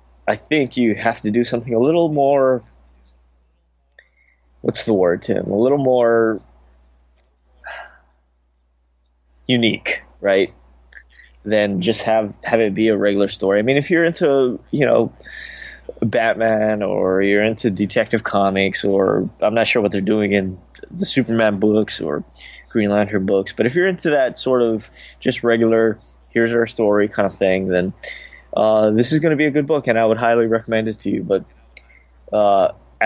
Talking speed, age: 165 wpm, 20-39